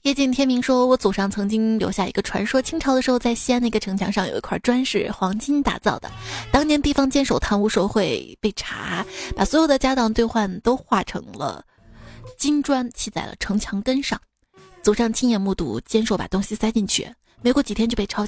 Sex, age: female, 20-39